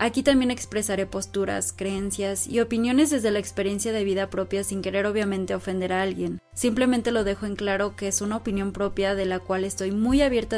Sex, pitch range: female, 185-220 Hz